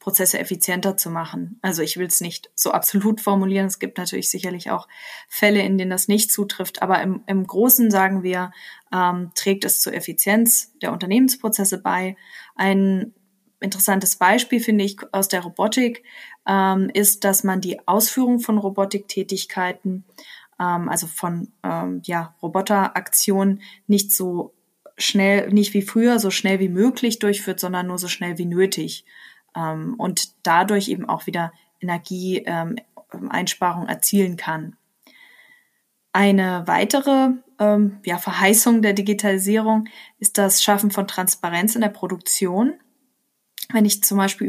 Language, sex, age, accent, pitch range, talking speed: German, female, 20-39, German, 185-210 Hz, 140 wpm